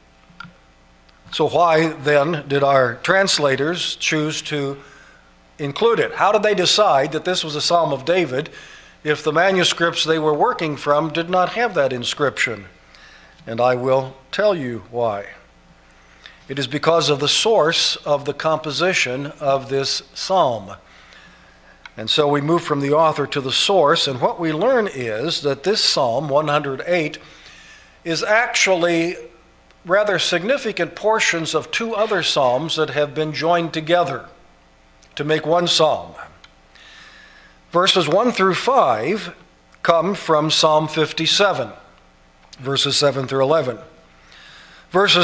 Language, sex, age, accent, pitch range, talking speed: English, male, 50-69, American, 135-175 Hz, 135 wpm